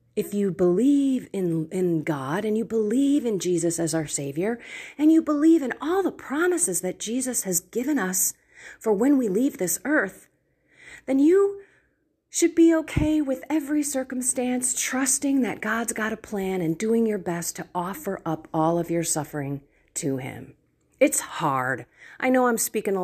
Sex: female